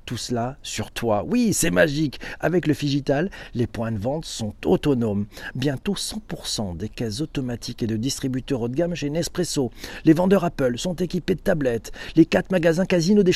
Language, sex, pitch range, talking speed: French, male, 115-165 Hz, 185 wpm